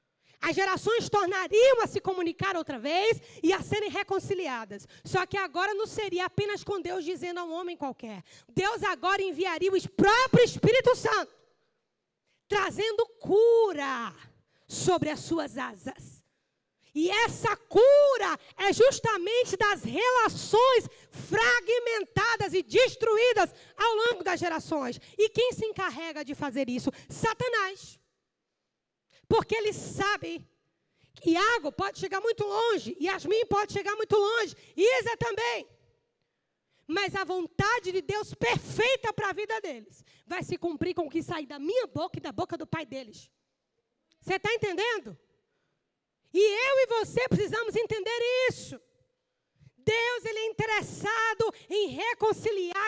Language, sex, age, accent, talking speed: Portuguese, female, 20-39, Brazilian, 135 wpm